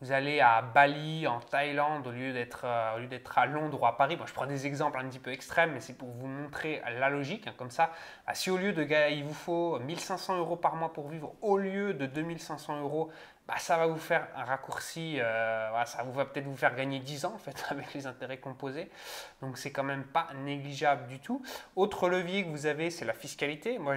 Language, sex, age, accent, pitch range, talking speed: French, male, 20-39, French, 135-170 Hz, 245 wpm